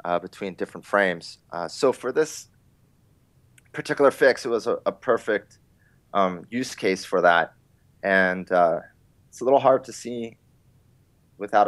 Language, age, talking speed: English, 30-49, 150 wpm